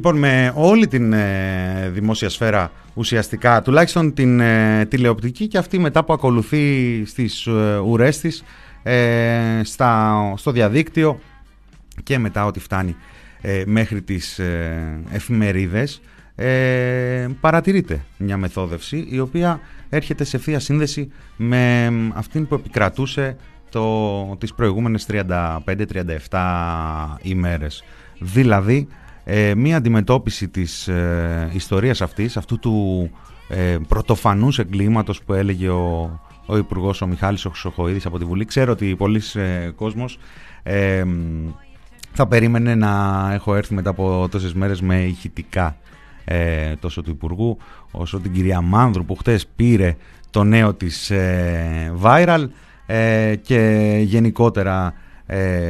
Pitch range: 95-120 Hz